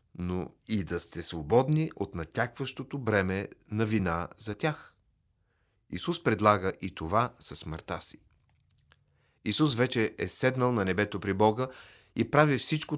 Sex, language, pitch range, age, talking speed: male, Bulgarian, 95-130 Hz, 40-59, 140 wpm